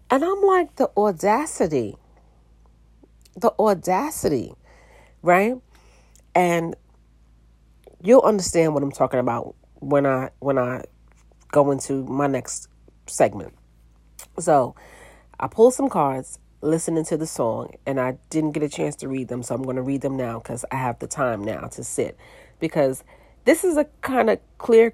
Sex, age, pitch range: female, 40-59, 135-185 Hz